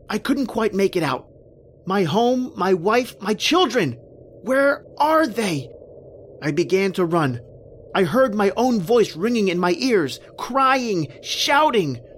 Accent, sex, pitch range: American, male, 165-245 Hz